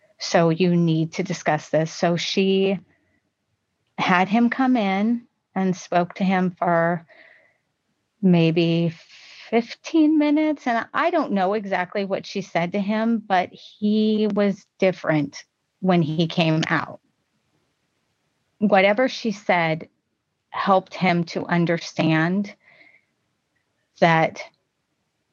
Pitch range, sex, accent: 165-195 Hz, female, American